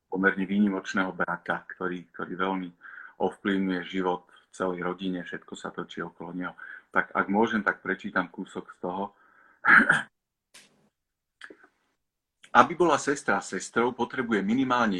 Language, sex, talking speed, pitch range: Slovak, male, 120 wpm, 90-120 Hz